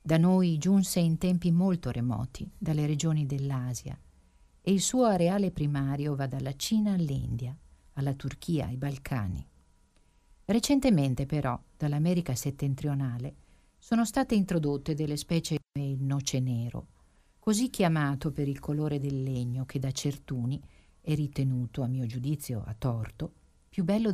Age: 50-69